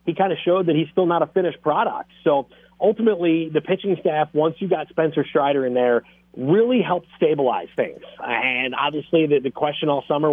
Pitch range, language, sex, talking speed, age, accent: 145-175 Hz, English, male, 190 wpm, 30-49, American